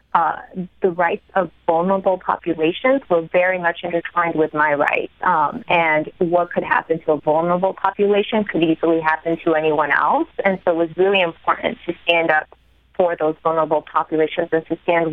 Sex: female